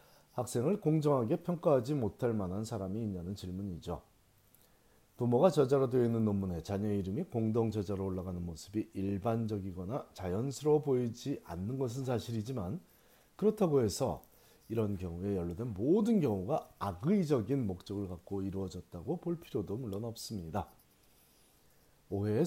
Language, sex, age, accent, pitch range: Korean, male, 40-59, native, 95-135 Hz